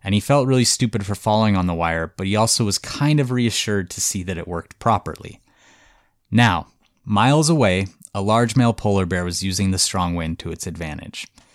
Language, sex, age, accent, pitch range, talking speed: English, male, 30-49, American, 90-115 Hz, 205 wpm